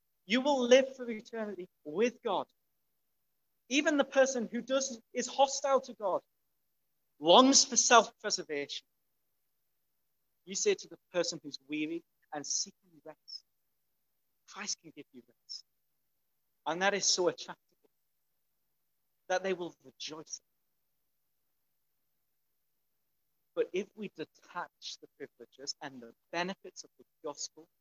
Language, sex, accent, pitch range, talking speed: English, male, British, 175-245 Hz, 125 wpm